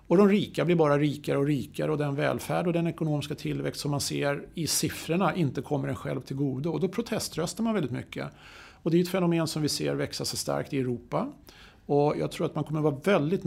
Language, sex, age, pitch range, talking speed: Swedish, male, 50-69, 135-160 Hz, 240 wpm